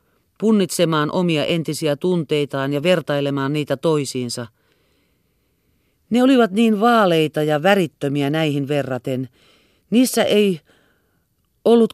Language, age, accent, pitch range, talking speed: Finnish, 40-59, native, 135-205 Hz, 95 wpm